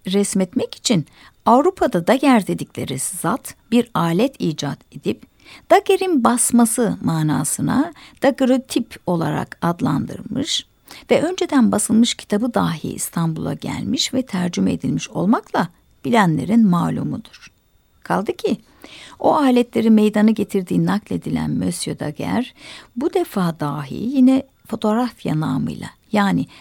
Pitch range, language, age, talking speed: 180-265 Hz, Turkish, 60-79, 105 wpm